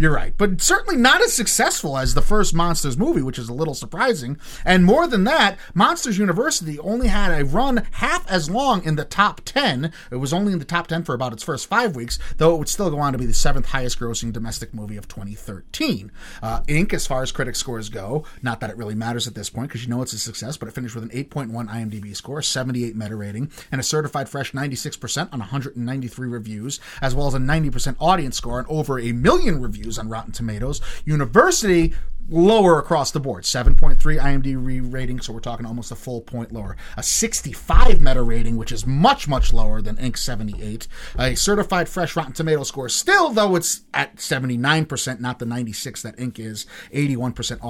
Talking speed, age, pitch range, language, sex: 210 wpm, 30-49, 115-155 Hz, English, male